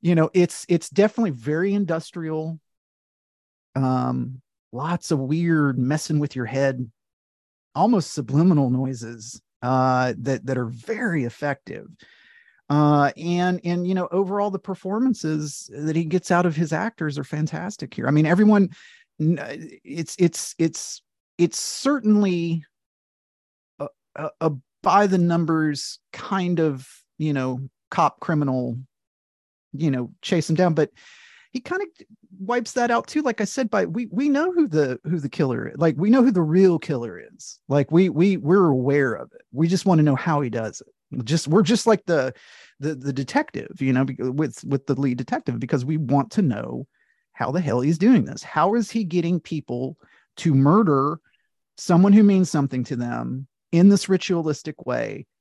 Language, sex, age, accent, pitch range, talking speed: English, male, 30-49, American, 135-185 Hz, 170 wpm